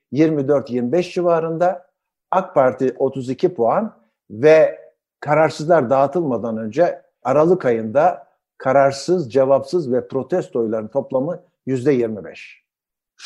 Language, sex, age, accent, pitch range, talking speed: Turkish, male, 60-79, native, 140-205 Hz, 85 wpm